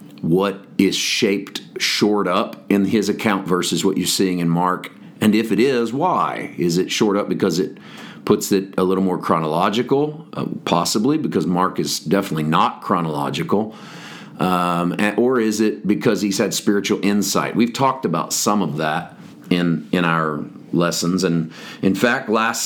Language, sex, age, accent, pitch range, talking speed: English, male, 40-59, American, 90-110 Hz, 165 wpm